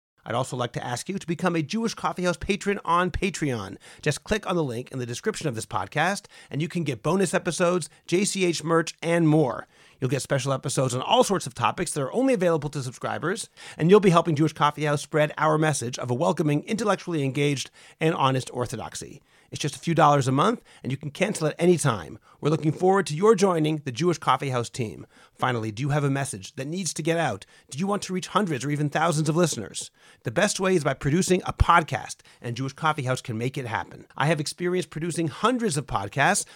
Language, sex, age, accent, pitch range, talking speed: English, male, 40-59, American, 135-180 Hz, 220 wpm